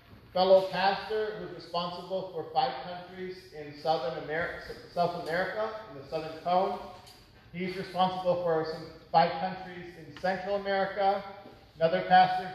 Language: English